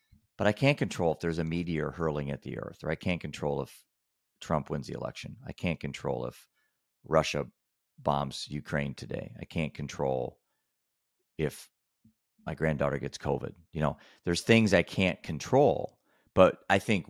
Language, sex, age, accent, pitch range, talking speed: English, male, 40-59, American, 75-95 Hz, 165 wpm